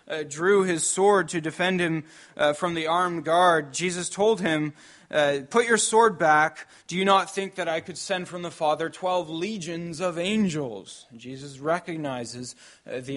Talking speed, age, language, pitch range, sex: 180 wpm, 20-39, English, 150-190 Hz, male